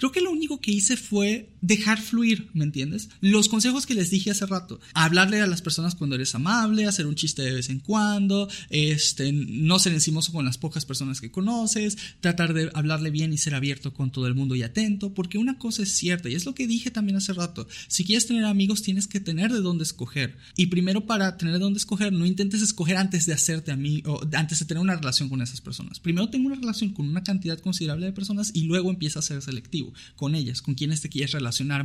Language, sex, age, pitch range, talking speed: Spanish, male, 30-49, 140-195 Hz, 235 wpm